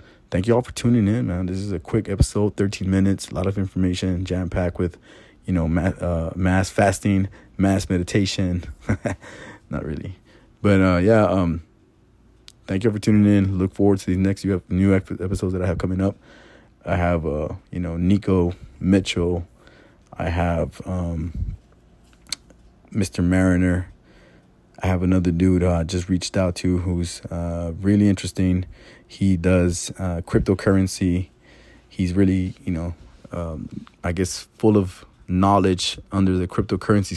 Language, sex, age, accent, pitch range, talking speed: English, male, 20-39, American, 90-100 Hz, 155 wpm